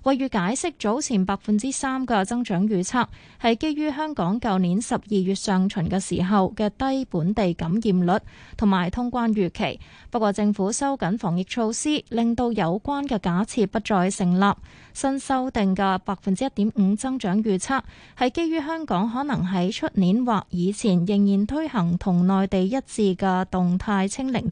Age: 20-39